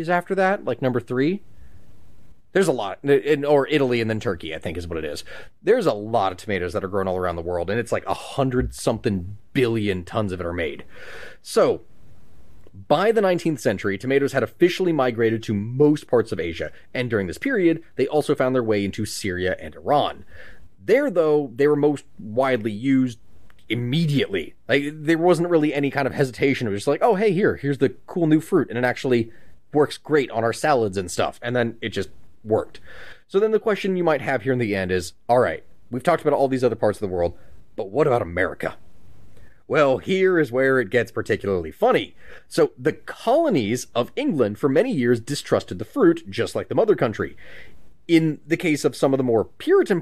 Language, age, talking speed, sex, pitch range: English, 30-49, 210 wpm, male, 110-155 Hz